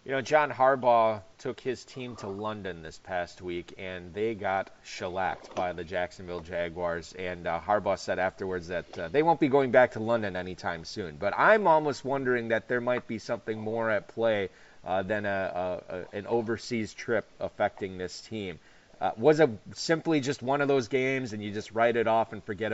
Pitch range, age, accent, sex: 105-125 Hz, 30-49, American, male